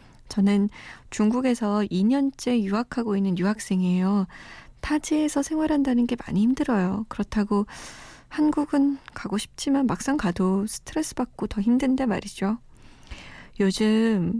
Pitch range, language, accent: 195-255 Hz, Korean, native